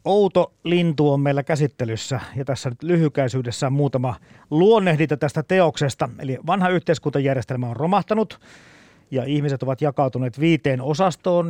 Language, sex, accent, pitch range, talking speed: Finnish, male, native, 125-160 Hz, 125 wpm